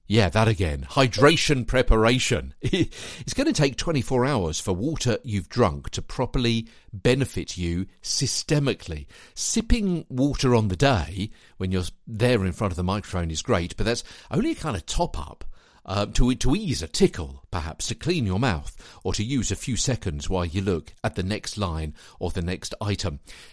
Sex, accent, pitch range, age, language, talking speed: male, British, 90-125 Hz, 50-69, English, 180 wpm